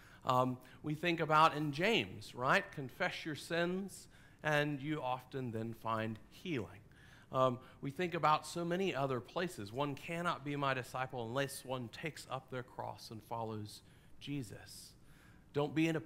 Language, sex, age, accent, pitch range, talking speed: English, male, 40-59, American, 130-170 Hz, 155 wpm